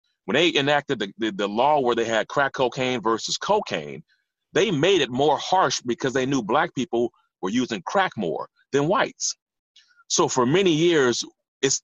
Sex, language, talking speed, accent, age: male, English, 170 wpm, American, 30-49